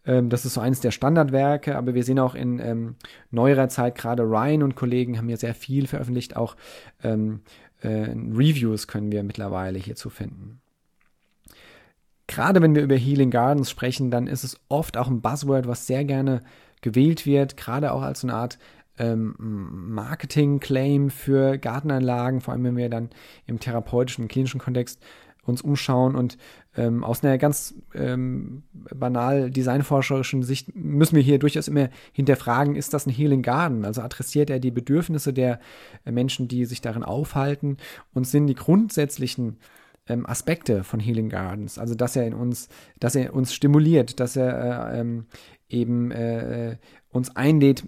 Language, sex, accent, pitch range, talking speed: German, male, German, 115-140 Hz, 160 wpm